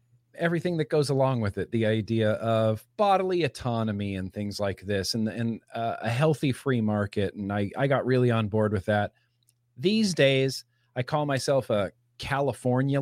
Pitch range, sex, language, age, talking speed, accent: 110-135 Hz, male, English, 40-59, 175 wpm, American